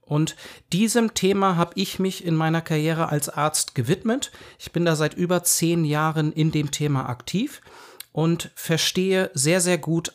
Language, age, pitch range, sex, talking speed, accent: German, 40-59, 155-185 Hz, male, 165 wpm, German